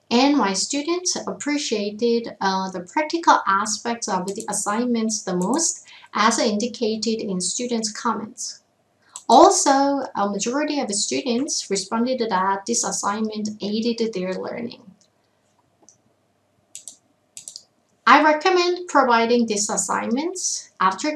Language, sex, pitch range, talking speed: English, female, 205-275 Hz, 105 wpm